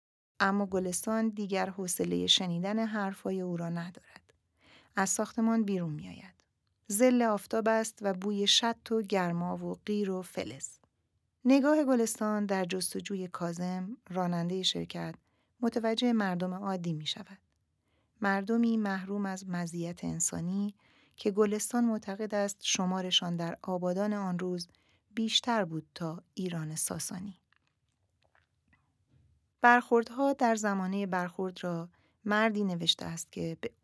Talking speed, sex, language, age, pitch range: 120 wpm, female, Persian, 40-59, 175-210 Hz